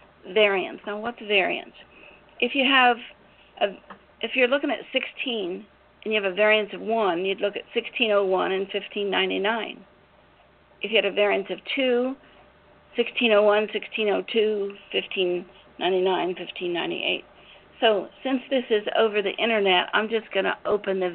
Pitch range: 190-225 Hz